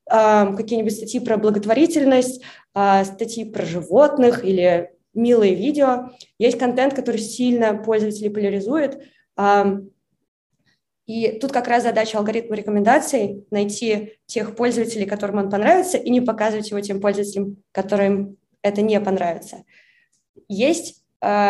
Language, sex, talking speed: Russian, female, 115 wpm